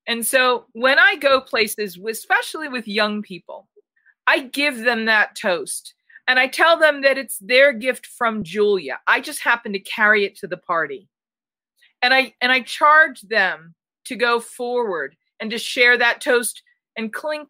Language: English